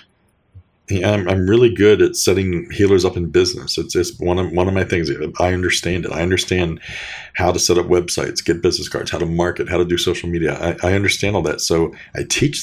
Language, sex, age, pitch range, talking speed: English, male, 40-59, 85-105 Hz, 230 wpm